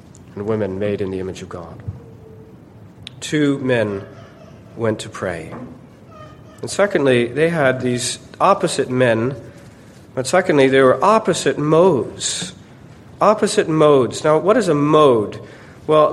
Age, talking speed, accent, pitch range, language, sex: 40-59, 125 wpm, American, 125-175 Hz, English, male